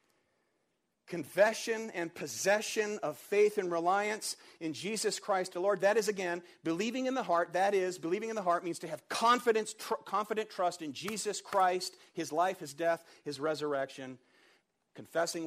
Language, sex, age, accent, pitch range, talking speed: English, male, 50-69, American, 145-210 Hz, 165 wpm